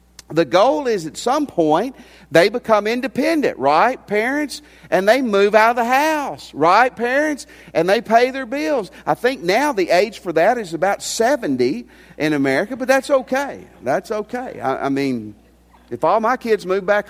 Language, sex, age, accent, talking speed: English, male, 50-69, American, 180 wpm